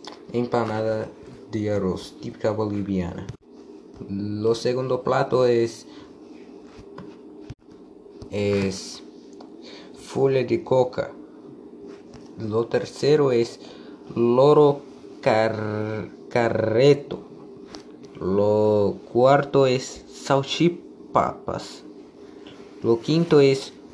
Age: 20-39